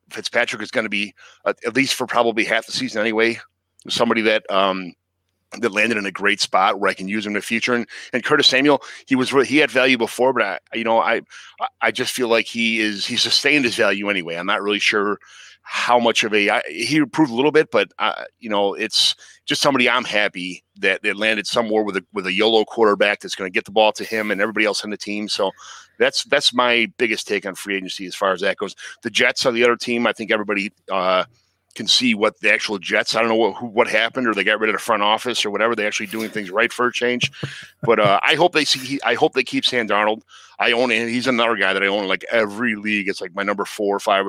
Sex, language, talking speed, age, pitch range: male, English, 260 wpm, 30-49, 100-120 Hz